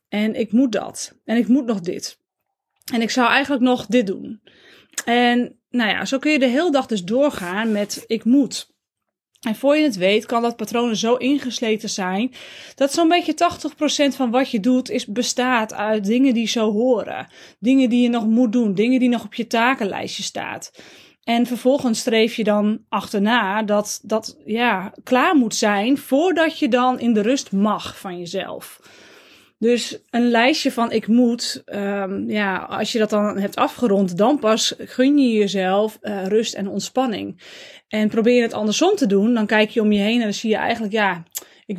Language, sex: Dutch, female